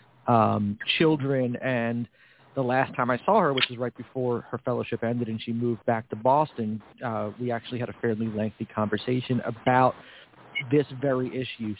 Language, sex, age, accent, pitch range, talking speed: English, male, 40-59, American, 110-125 Hz, 175 wpm